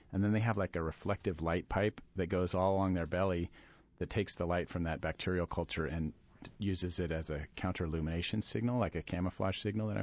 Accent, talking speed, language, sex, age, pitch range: American, 220 wpm, English, male, 40-59, 85-100 Hz